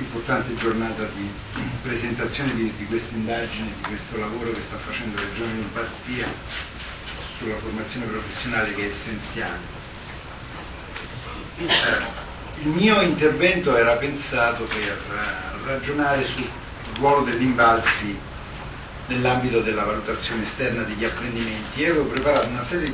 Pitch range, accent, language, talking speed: 110-140 Hz, native, Italian, 115 wpm